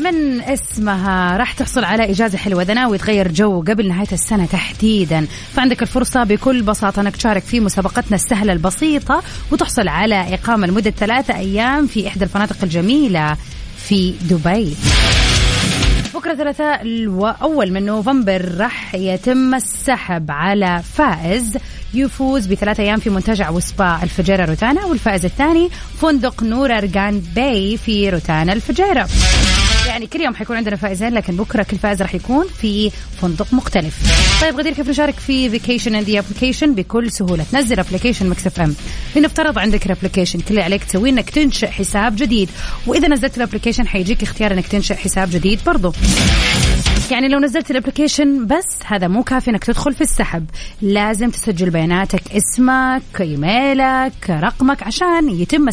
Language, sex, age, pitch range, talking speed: English, female, 30-49, 195-260 Hz, 140 wpm